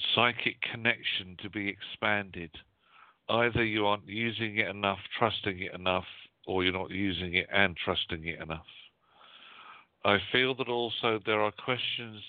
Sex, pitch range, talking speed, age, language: male, 95-105 Hz, 145 wpm, 50-69, English